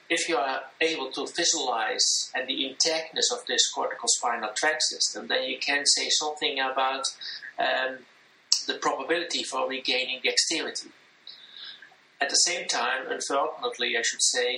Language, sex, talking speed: English, male, 135 wpm